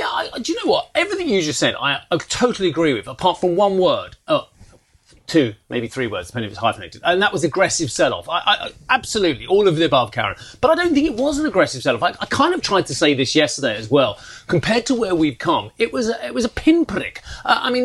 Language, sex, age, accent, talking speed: English, male, 30-49, British, 265 wpm